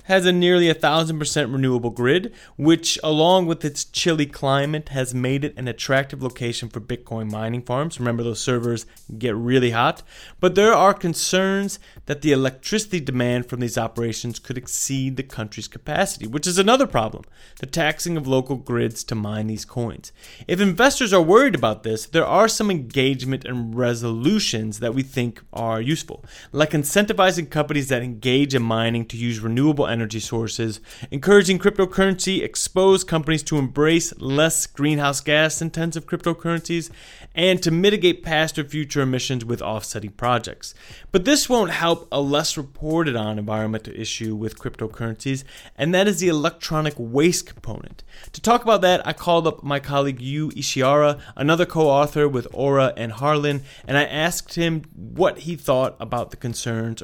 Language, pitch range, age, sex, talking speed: English, 120-165 Hz, 30-49, male, 160 wpm